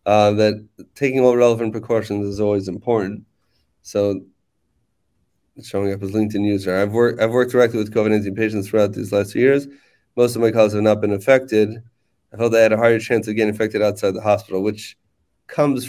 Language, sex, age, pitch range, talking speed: English, male, 30-49, 100-115 Hz, 195 wpm